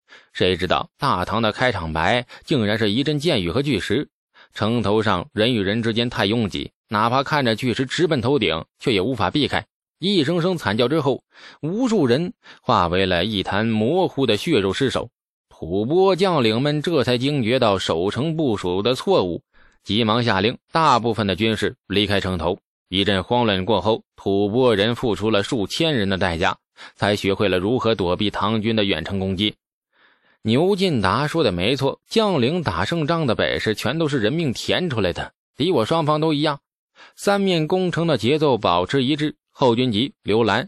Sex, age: male, 20-39